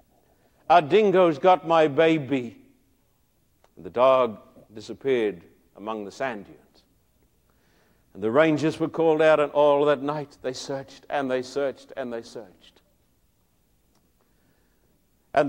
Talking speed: 120 wpm